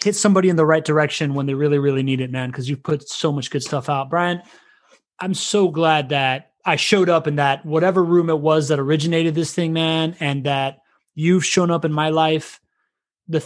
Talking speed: 220 wpm